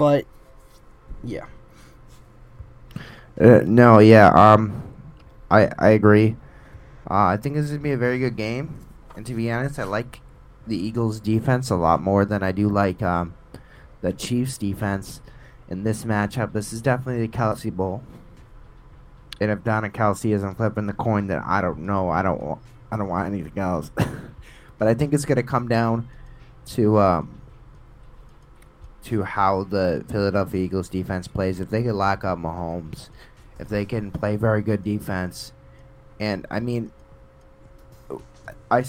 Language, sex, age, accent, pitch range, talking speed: English, male, 20-39, American, 95-120 Hz, 155 wpm